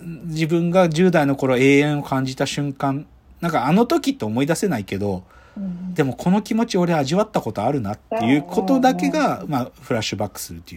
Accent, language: native, Japanese